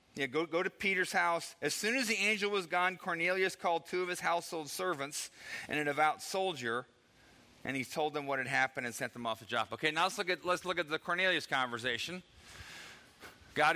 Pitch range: 110-155 Hz